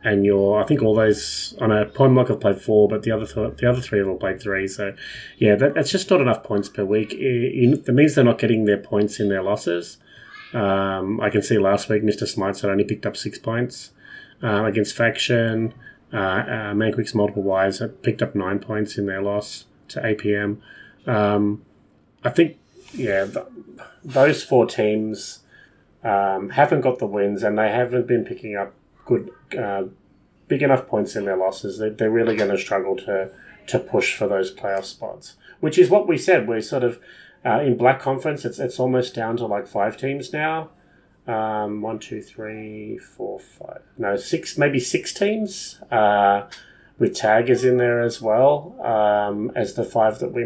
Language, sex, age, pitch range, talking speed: English, male, 30-49, 100-125 Hz, 190 wpm